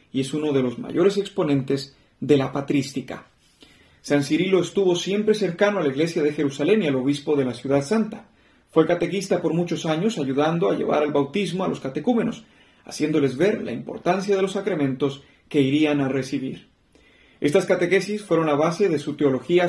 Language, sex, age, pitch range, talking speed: Spanish, male, 40-59, 140-190 Hz, 180 wpm